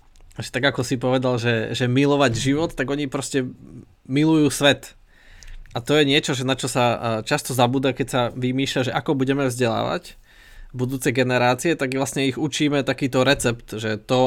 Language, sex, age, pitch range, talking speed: Slovak, male, 20-39, 120-140 Hz, 170 wpm